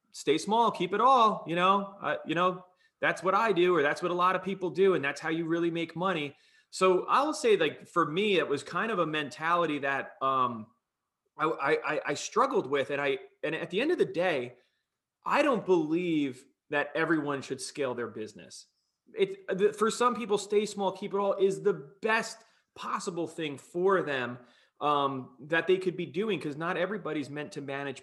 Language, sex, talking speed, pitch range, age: English, male, 200 wpm, 145-195 Hz, 30-49